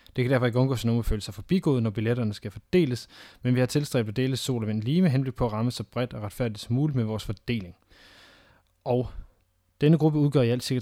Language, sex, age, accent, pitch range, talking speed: Danish, male, 20-39, native, 105-125 Hz, 245 wpm